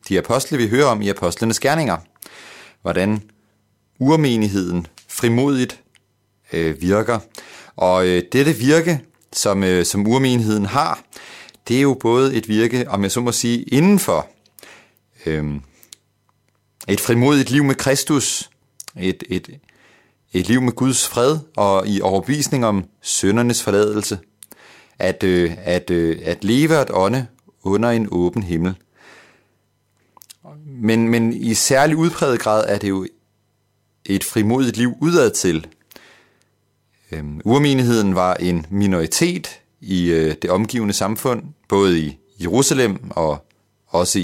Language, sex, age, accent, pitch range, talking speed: Danish, male, 40-59, native, 95-125 Hz, 125 wpm